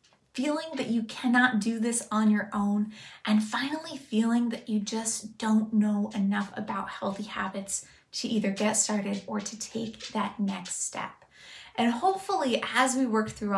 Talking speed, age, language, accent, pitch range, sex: 165 wpm, 20-39, English, American, 210-245 Hz, female